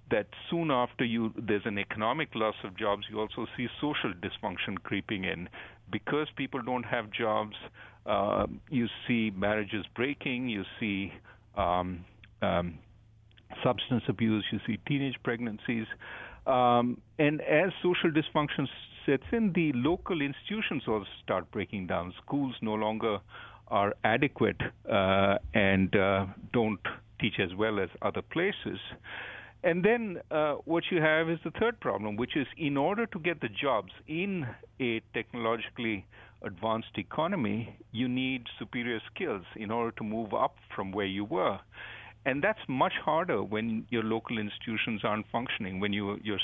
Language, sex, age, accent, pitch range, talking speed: English, male, 50-69, Indian, 105-130 Hz, 150 wpm